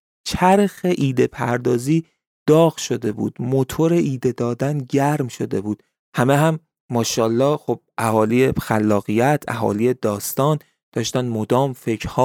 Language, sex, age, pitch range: Persian, male, 30-49, 115-155 Hz